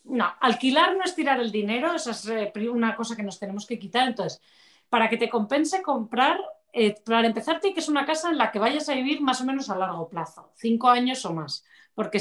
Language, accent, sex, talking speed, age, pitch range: Spanish, Spanish, female, 225 wpm, 40-59, 195-260 Hz